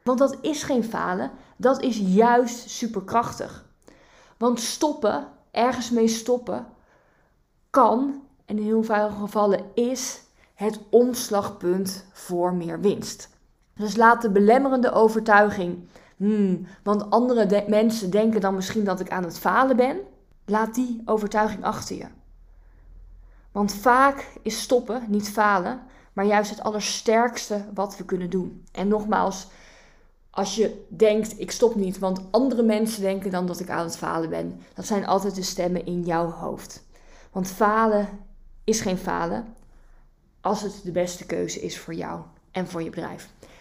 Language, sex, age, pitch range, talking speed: Dutch, female, 20-39, 190-230 Hz, 145 wpm